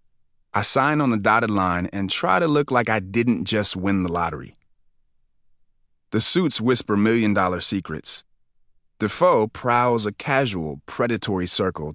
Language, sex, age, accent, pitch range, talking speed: English, male, 30-49, American, 95-120 Hz, 140 wpm